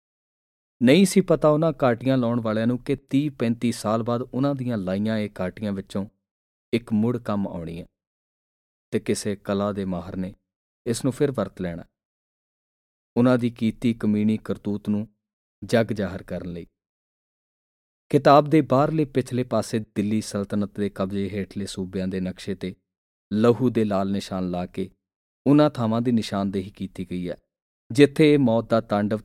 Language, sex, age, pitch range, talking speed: Punjabi, male, 40-59, 95-120 Hz, 125 wpm